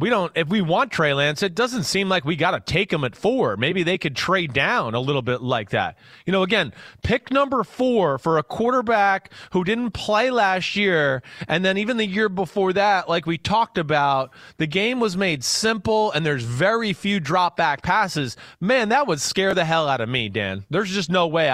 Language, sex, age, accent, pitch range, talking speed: English, male, 30-49, American, 150-210 Hz, 220 wpm